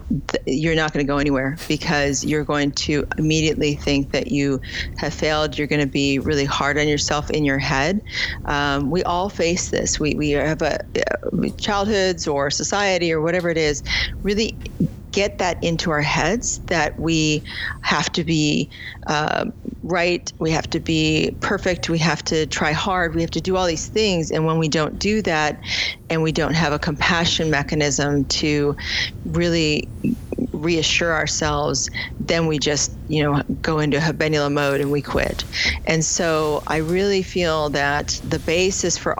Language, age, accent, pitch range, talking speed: English, 40-59, American, 145-165 Hz, 170 wpm